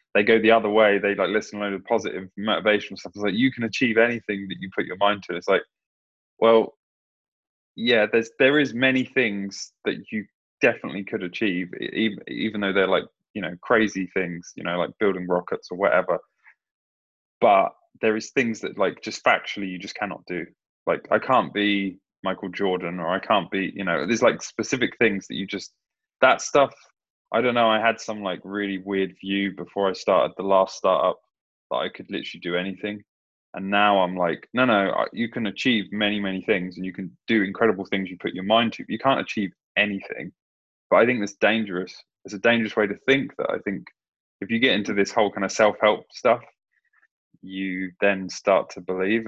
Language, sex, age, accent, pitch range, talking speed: English, male, 20-39, British, 95-110 Hz, 205 wpm